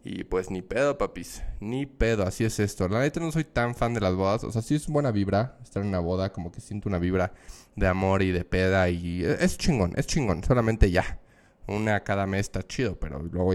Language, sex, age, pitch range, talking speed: Spanish, male, 20-39, 100-140 Hz, 235 wpm